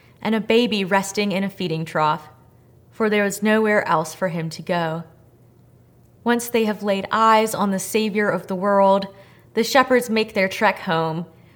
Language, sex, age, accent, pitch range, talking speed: English, female, 20-39, American, 165-205 Hz, 175 wpm